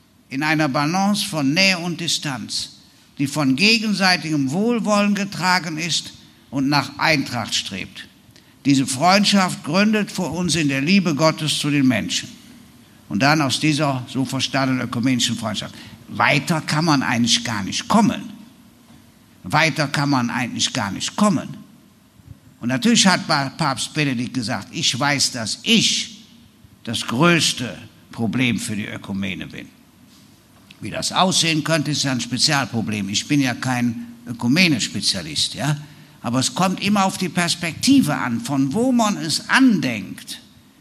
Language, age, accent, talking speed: German, 60-79, German, 140 wpm